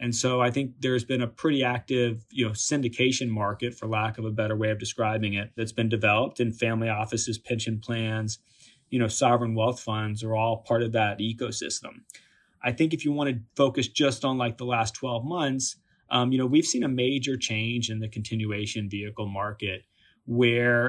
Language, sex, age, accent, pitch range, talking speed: English, male, 30-49, American, 110-125 Hz, 200 wpm